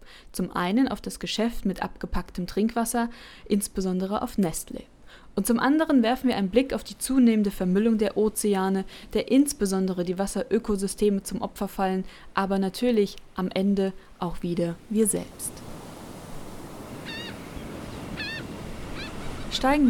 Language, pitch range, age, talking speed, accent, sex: German, 190-235 Hz, 20-39, 120 wpm, German, female